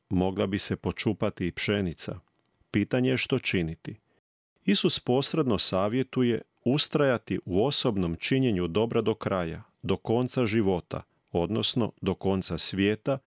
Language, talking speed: Croatian, 120 wpm